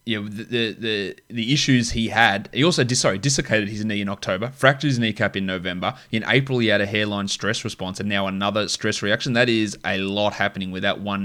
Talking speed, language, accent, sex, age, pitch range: 235 wpm, English, Australian, male, 20-39, 100-120 Hz